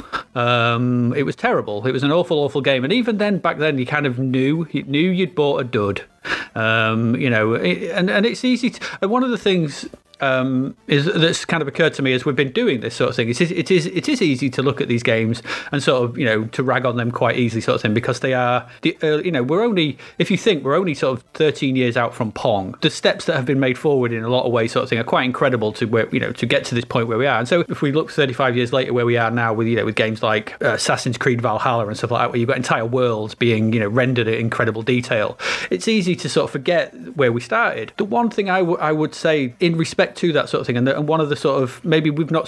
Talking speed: 285 wpm